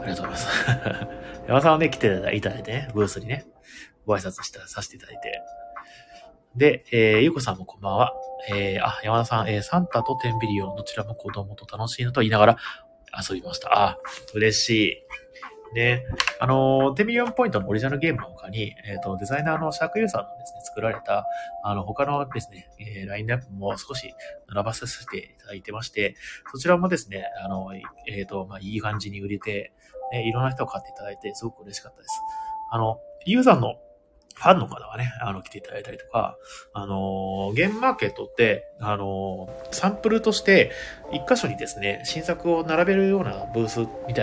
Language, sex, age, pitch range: Japanese, male, 30-49, 105-145 Hz